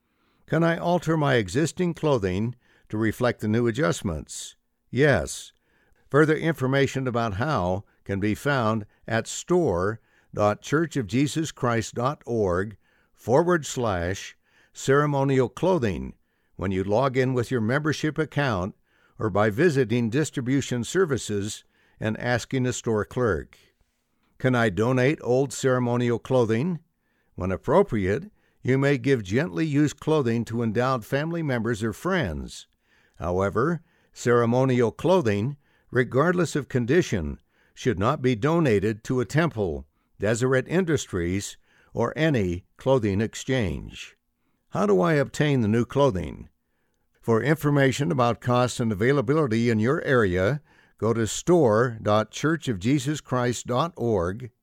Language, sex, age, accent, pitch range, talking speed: English, male, 60-79, American, 110-145 Hz, 110 wpm